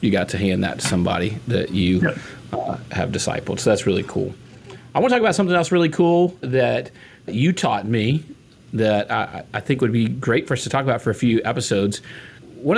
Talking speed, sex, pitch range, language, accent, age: 215 wpm, male, 105-135 Hz, English, American, 40-59